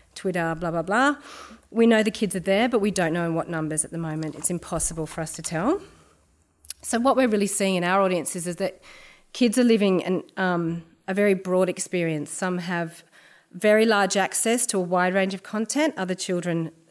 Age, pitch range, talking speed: 40-59, 165-200 Hz, 200 wpm